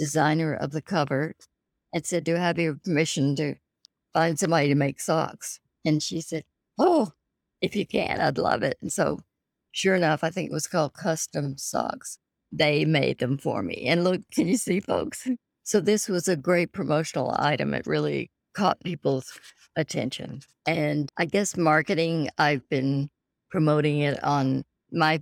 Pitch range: 145-170 Hz